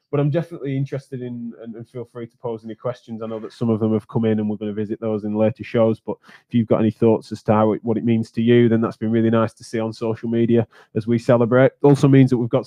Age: 20-39